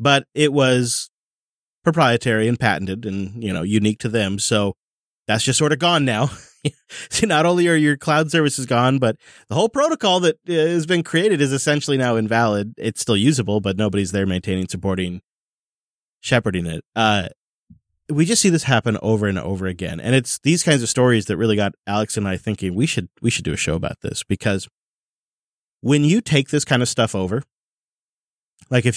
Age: 30-49